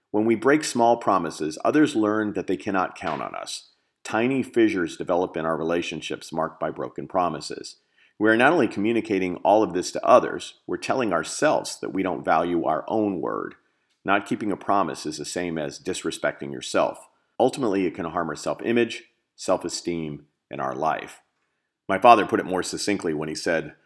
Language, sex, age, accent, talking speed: English, male, 40-59, American, 180 wpm